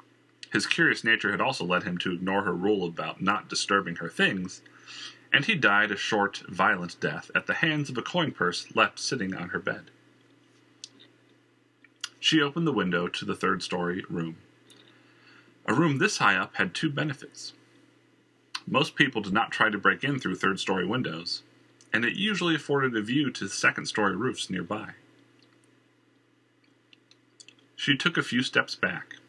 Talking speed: 160 wpm